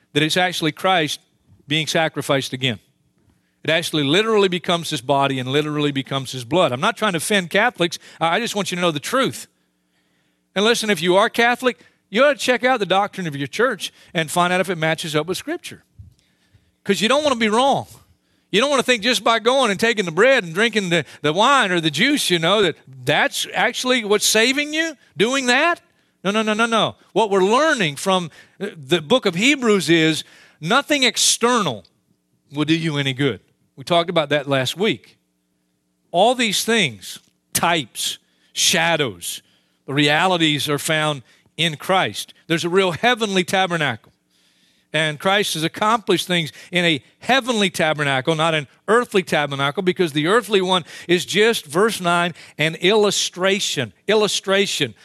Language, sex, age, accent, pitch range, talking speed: English, male, 40-59, American, 150-215 Hz, 175 wpm